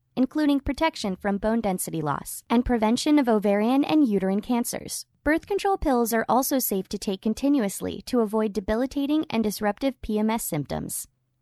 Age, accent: 20-39, American